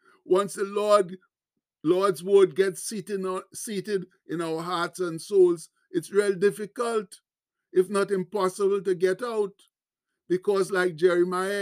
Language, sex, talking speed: English, male, 130 wpm